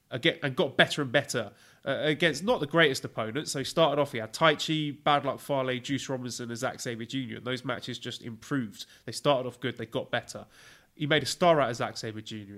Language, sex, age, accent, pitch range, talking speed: English, male, 20-39, British, 120-145 Hz, 235 wpm